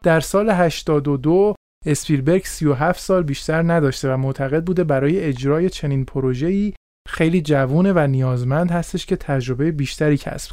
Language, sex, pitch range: Persian, male, 135-180 Hz